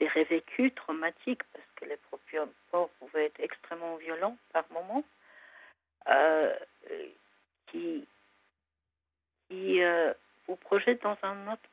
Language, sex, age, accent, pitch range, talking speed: French, female, 60-79, French, 165-230 Hz, 115 wpm